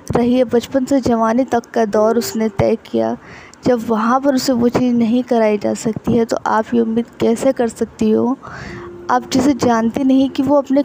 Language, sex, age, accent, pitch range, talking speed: Hindi, female, 20-39, native, 220-270 Hz, 205 wpm